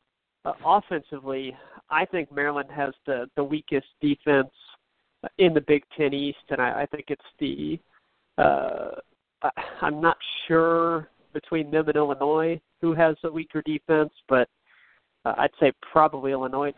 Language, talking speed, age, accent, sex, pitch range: English, 145 wpm, 50-69, American, male, 140-165 Hz